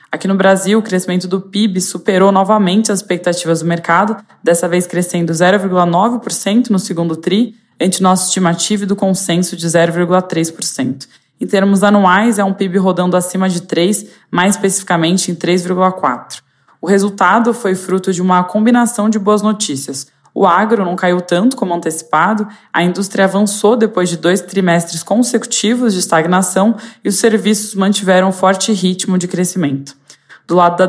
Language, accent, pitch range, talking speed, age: Portuguese, Brazilian, 175-200 Hz, 155 wpm, 20-39